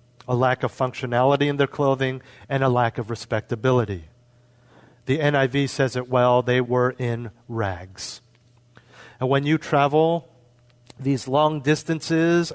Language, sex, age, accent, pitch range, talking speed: English, male, 40-59, American, 120-160 Hz, 135 wpm